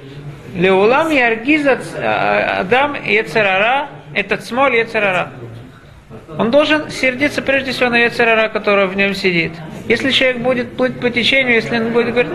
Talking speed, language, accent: 135 wpm, Russian, native